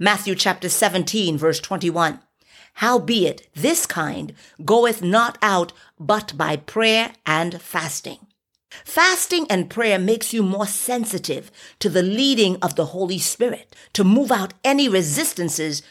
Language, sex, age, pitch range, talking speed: English, female, 50-69, 175-240 Hz, 130 wpm